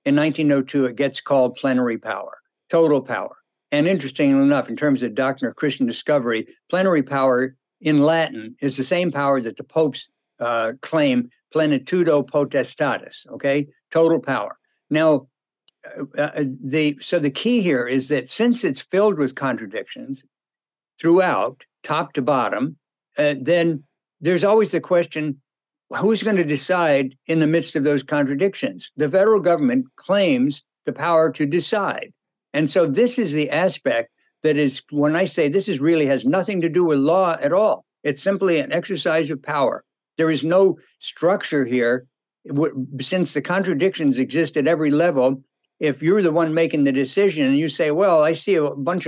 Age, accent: 60-79, American